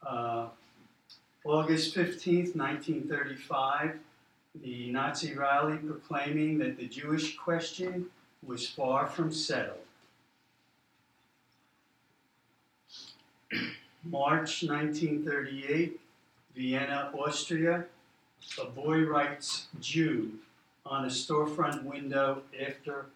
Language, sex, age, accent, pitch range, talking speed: English, male, 50-69, American, 125-155 Hz, 75 wpm